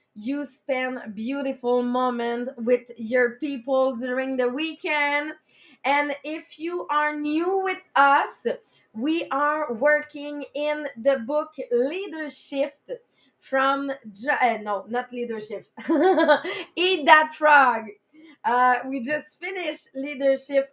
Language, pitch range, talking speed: English, 250-300 Hz, 105 wpm